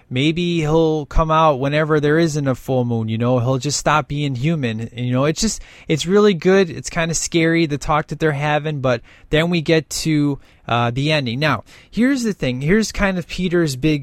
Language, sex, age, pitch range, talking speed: English, male, 20-39, 130-175 Hz, 215 wpm